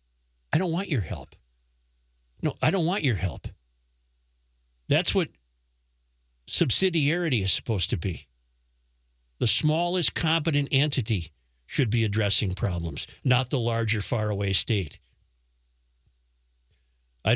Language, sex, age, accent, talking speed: English, male, 50-69, American, 110 wpm